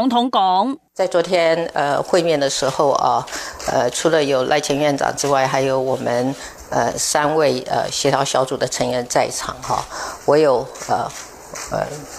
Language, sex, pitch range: Chinese, female, 190-275 Hz